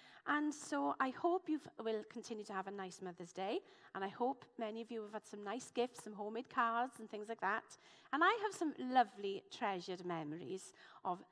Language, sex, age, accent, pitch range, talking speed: English, female, 40-59, British, 195-275 Hz, 205 wpm